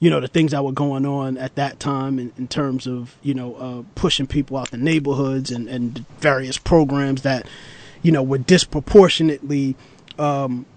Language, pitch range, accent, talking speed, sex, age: English, 135-170 Hz, American, 185 wpm, male, 30-49